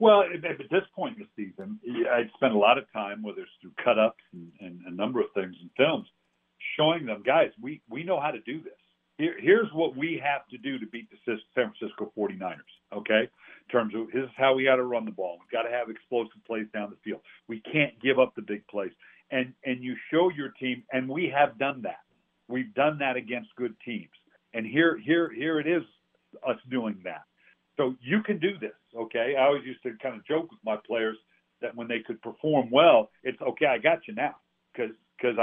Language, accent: English, American